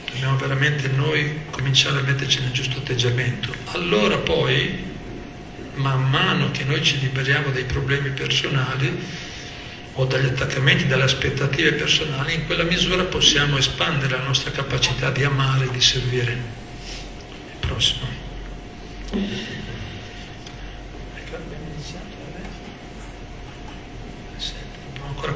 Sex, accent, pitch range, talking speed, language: male, native, 130-150 Hz, 100 wpm, Italian